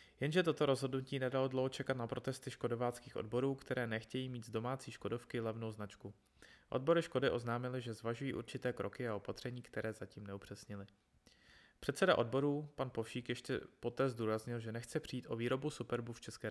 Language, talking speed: Czech, 165 wpm